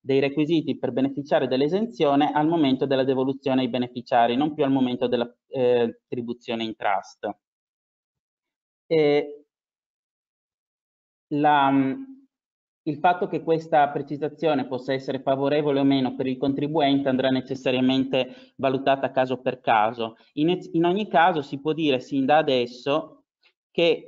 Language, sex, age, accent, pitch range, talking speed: Italian, male, 30-49, native, 130-155 Hz, 125 wpm